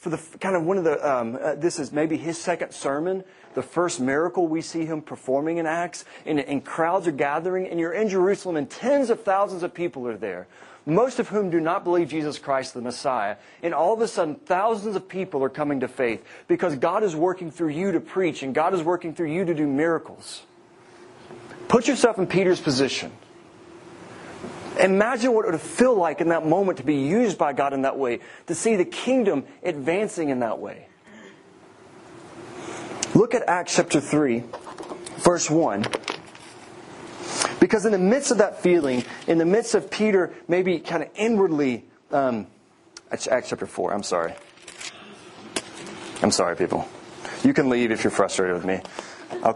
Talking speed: 185 wpm